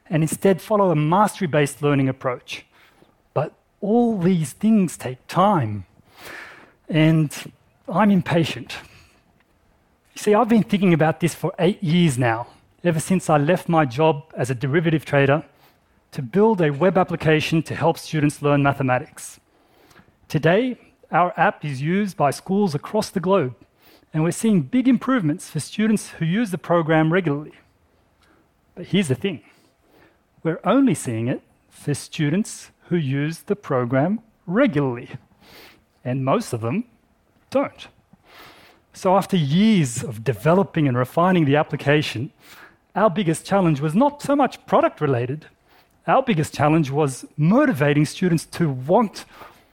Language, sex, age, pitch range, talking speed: English, male, 30-49, 140-185 Hz, 135 wpm